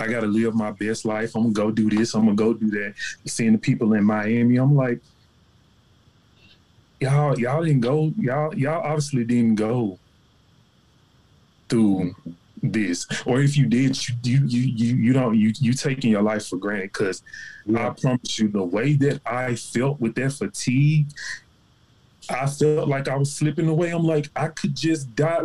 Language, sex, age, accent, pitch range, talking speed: English, male, 20-39, American, 115-145 Hz, 175 wpm